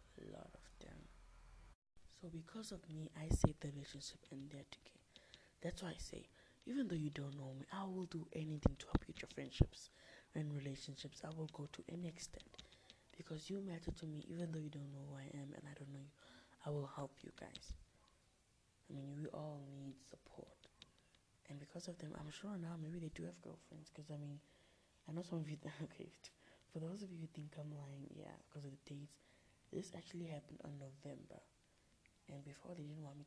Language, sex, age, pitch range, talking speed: English, female, 20-39, 140-160 Hz, 205 wpm